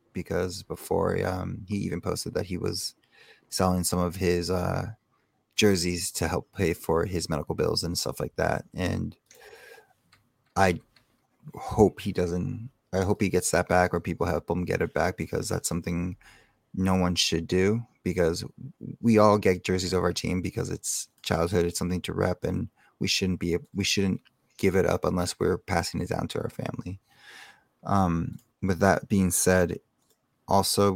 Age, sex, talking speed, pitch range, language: 20-39, male, 175 wpm, 90-100 Hz, English